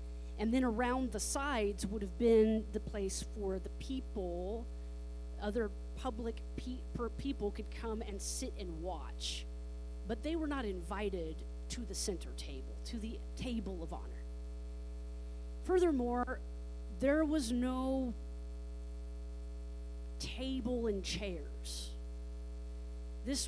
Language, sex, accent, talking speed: English, female, American, 115 wpm